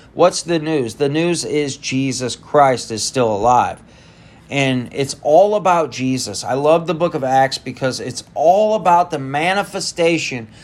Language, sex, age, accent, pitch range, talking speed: English, male, 30-49, American, 120-155 Hz, 160 wpm